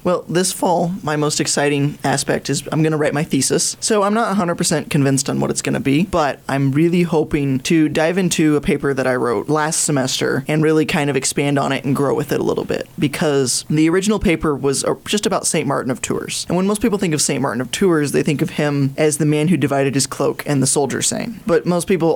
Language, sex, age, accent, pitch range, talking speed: English, male, 20-39, American, 145-175 Hz, 250 wpm